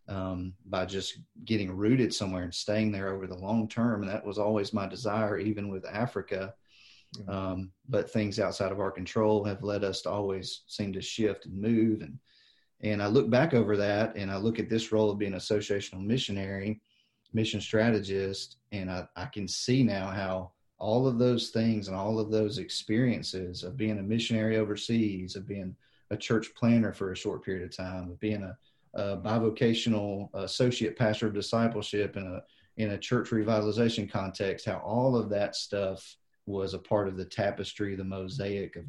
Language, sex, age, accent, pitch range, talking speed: English, male, 30-49, American, 95-110 Hz, 190 wpm